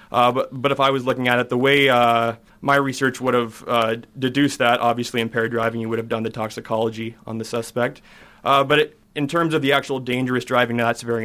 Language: English